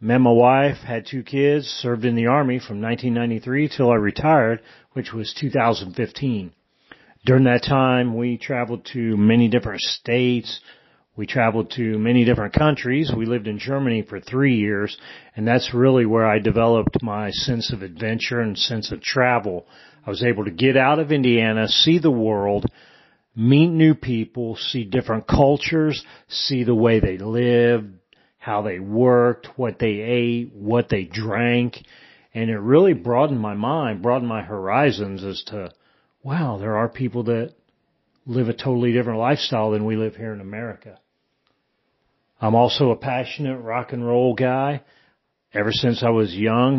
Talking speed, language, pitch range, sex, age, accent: 160 wpm, English, 110-130 Hz, male, 40-59, American